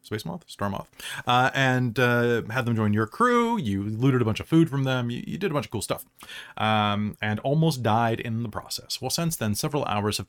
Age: 30-49